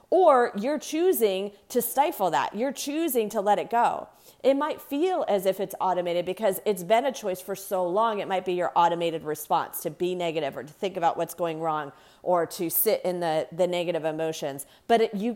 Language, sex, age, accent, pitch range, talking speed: English, female, 40-59, American, 175-235 Hz, 205 wpm